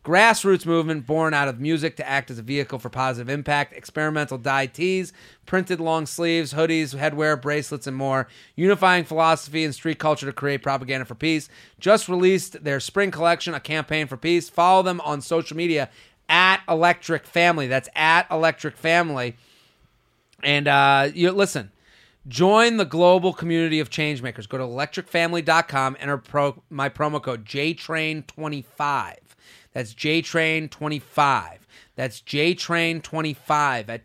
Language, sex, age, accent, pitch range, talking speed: English, male, 30-49, American, 135-170 Hz, 135 wpm